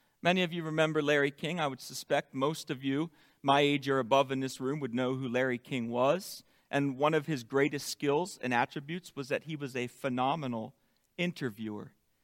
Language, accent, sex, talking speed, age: English, American, male, 195 wpm, 40-59